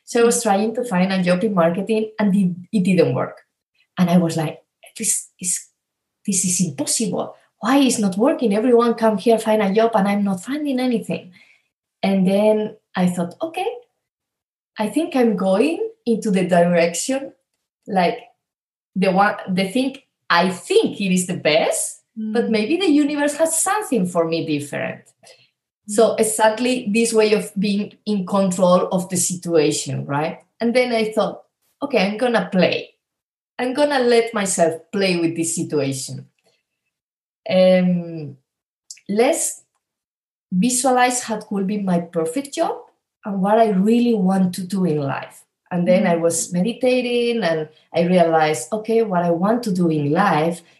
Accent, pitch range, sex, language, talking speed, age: Spanish, 175-235 Hz, female, English, 160 wpm, 20-39